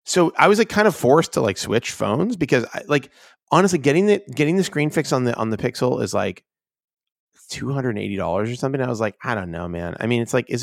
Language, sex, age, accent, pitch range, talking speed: English, male, 30-49, American, 105-150 Hz, 245 wpm